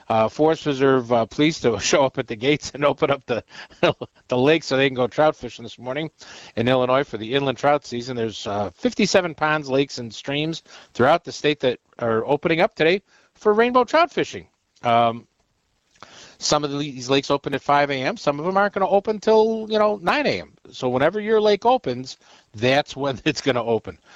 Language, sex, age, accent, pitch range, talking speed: English, male, 50-69, American, 120-160 Hz, 210 wpm